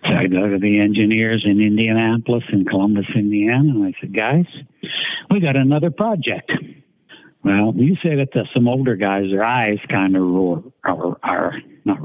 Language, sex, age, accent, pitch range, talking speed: English, male, 60-79, American, 100-130 Hz, 165 wpm